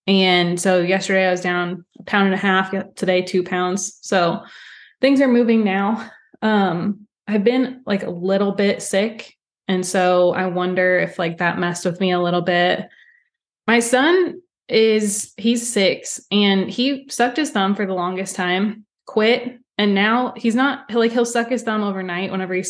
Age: 20-39